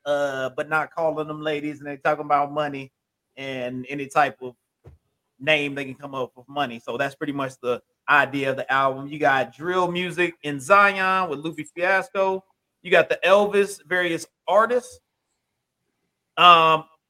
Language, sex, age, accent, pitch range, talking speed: English, male, 30-49, American, 150-190 Hz, 165 wpm